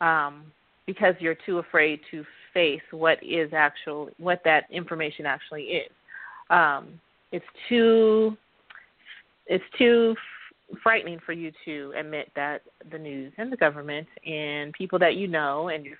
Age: 30-49